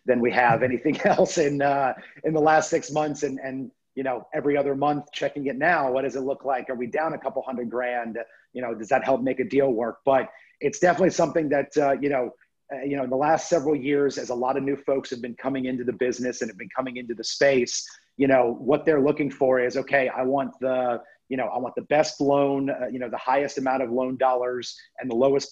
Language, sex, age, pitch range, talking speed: English, male, 30-49, 125-145 Hz, 255 wpm